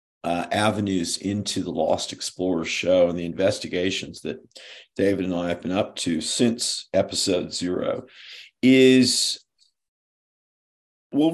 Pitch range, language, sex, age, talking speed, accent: 95-130 Hz, English, male, 50-69, 120 wpm, American